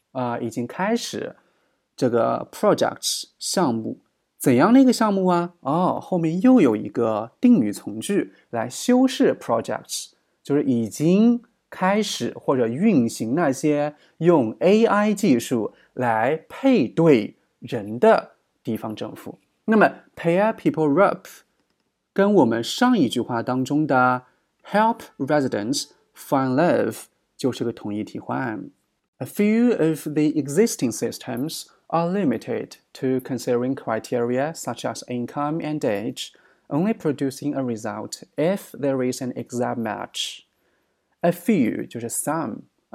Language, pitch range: Chinese, 125-205 Hz